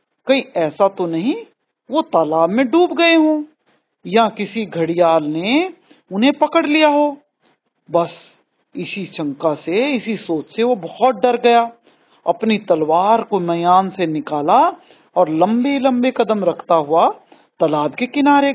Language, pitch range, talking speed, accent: Hindi, 175-285 Hz, 135 wpm, native